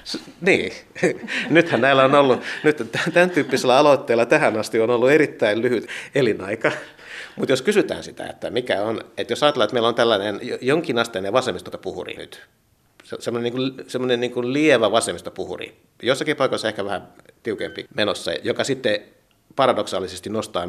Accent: native